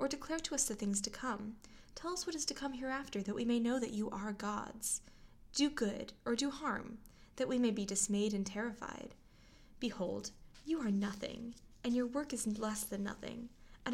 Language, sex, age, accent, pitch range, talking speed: English, female, 10-29, American, 205-250 Hz, 200 wpm